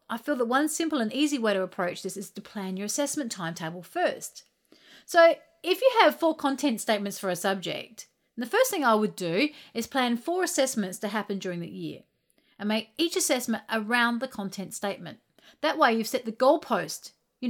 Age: 40-59